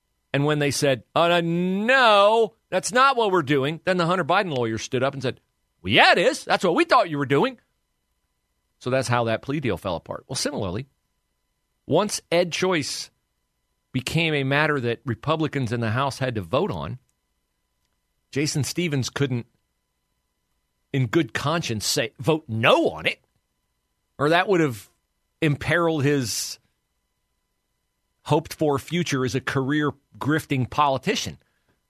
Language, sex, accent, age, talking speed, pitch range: English, male, American, 40-59, 150 wpm, 120-180 Hz